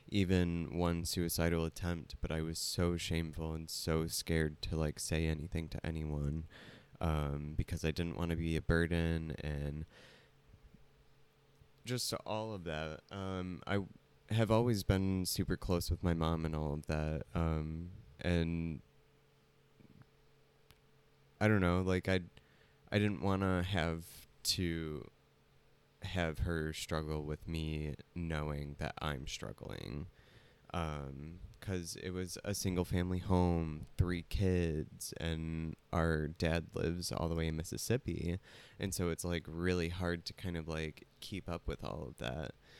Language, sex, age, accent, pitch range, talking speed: English, male, 20-39, American, 80-90 Hz, 145 wpm